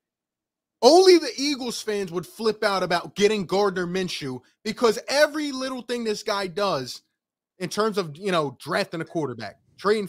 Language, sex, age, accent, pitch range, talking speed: English, male, 20-39, American, 140-205 Hz, 160 wpm